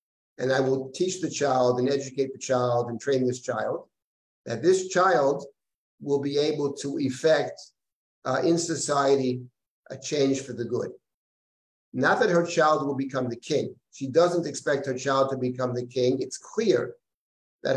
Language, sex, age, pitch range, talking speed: English, male, 50-69, 130-160 Hz, 170 wpm